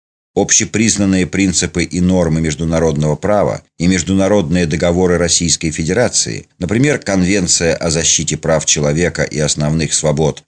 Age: 40-59